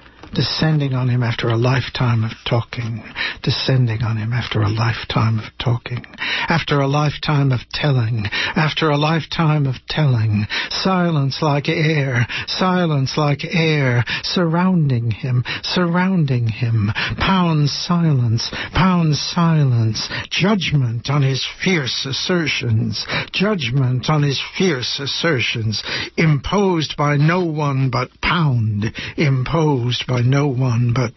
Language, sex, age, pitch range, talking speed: English, male, 60-79, 110-145 Hz, 115 wpm